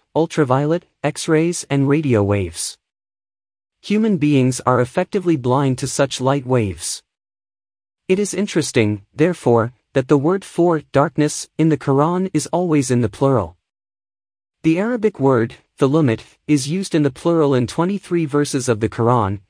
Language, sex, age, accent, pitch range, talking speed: English, male, 30-49, American, 115-160 Hz, 140 wpm